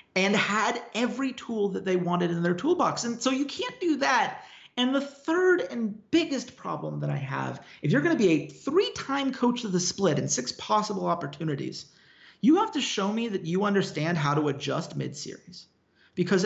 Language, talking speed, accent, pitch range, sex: English, 195 wpm, American, 145-215 Hz, male